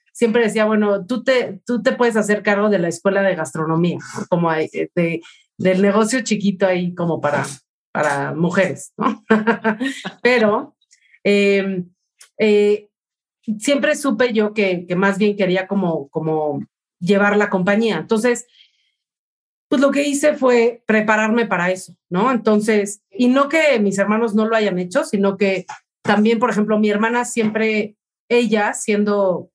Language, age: English, 40-59